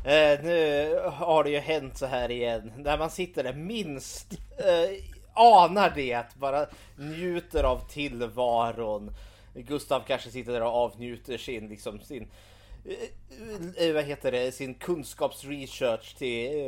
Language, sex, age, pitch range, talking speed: Swedish, male, 30-49, 110-145 Hz, 145 wpm